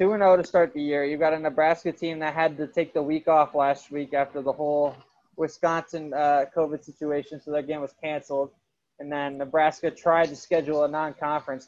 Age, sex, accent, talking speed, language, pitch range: 20-39, male, American, 200 wpm, English, 150-180 Hz